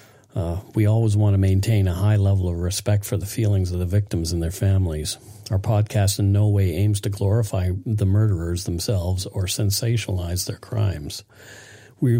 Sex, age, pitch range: male, 50-69, 95-110 Hz